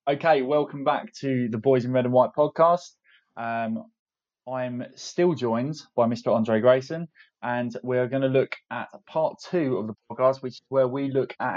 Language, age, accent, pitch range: English, 20-39, British, 110-130 Hz